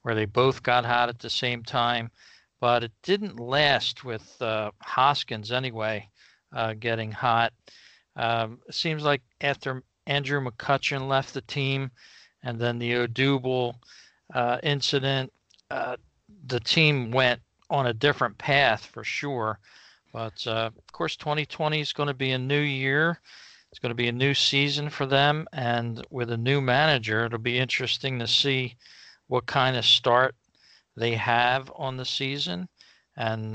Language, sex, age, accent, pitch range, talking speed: English, male, 50-69, American, 115-135 Hz, 155 wpm